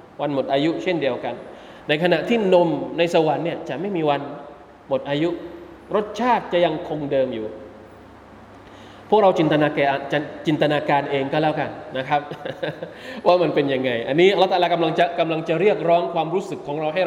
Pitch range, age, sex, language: 135-175 Hz, 20-39, male, Thai